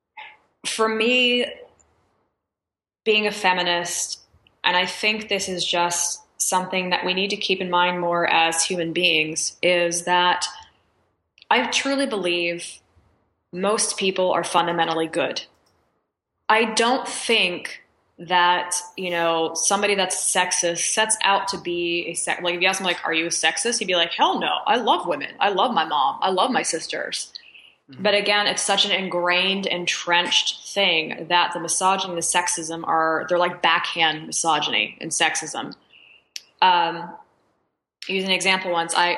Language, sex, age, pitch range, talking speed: English, female, 20-39, 165-185 Hz, 150 wpm